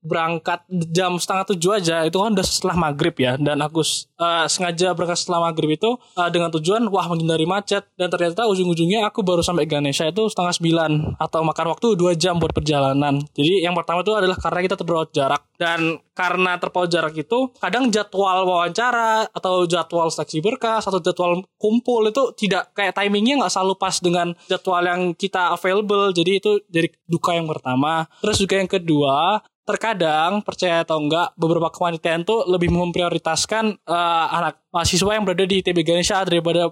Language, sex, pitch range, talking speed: Indonesian, male, 170-190 Hz, 175 wpm